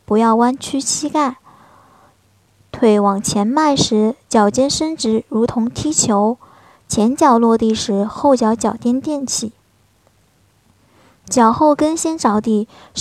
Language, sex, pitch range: Chinese, male, 215-275 Hz